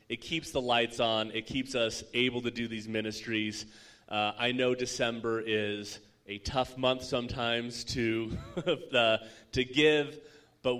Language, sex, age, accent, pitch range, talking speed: English, male, 30-49, American, 105-125 Hz, 150 wpm